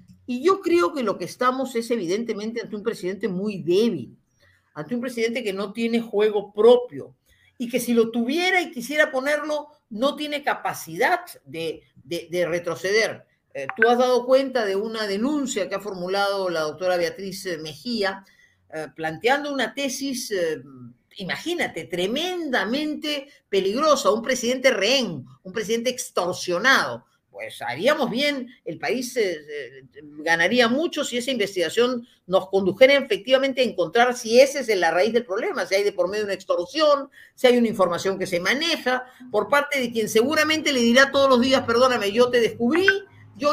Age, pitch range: 50-69, 195-275 Hz